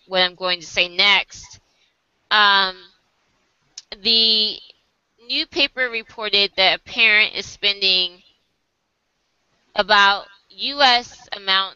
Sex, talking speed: female, 95 wpm